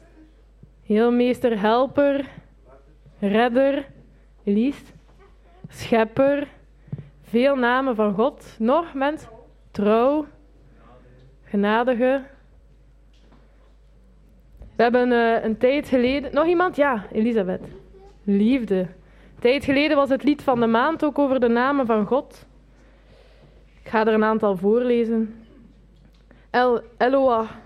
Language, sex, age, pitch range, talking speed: Dutch, female, 20-39, 190-245 Hz, 95 wpm